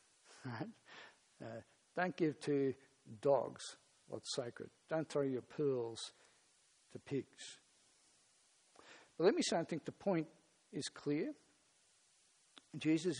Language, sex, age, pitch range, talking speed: English, male, 60-79, 135-160 Hz, 110 wpm